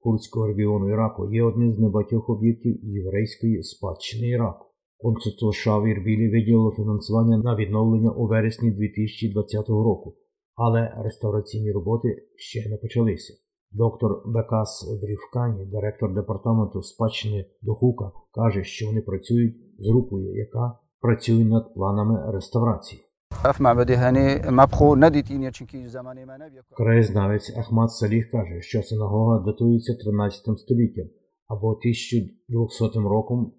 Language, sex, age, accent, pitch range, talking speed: Ukrainian, male, 50-69, native, 105-115 Hz, 100 wpm